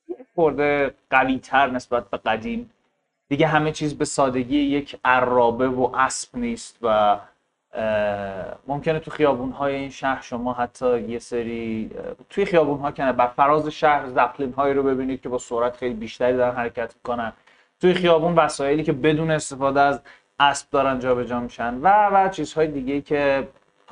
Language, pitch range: Persian, 125-155 Hz